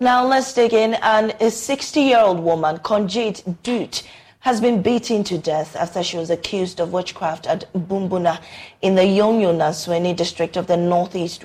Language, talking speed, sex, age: English, 155 wpm, female, 30-49